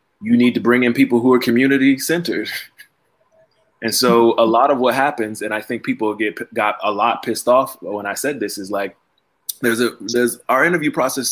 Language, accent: English, American